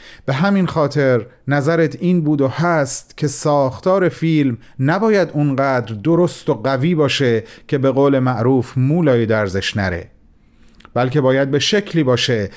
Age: 40-59